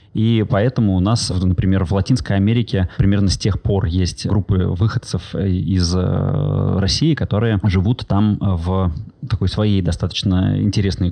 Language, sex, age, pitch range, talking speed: Russian, male, 20-39, 95-115 Hz, 135 wpm